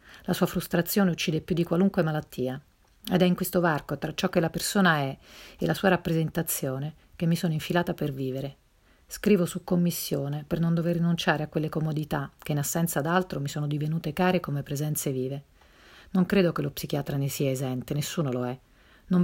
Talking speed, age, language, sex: 195 wpm, 40-59, Italian, female